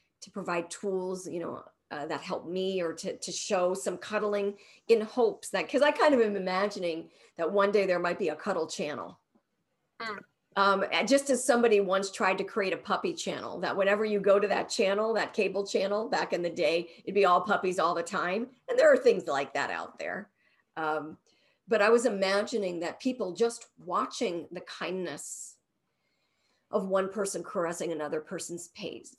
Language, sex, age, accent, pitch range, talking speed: English, female, 50-69, American, 175-210 Hz, 185 wpm